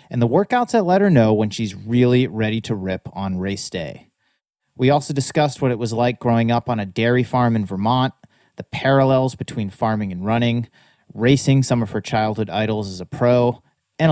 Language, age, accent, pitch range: English, 30-49, American, 110-145 Hz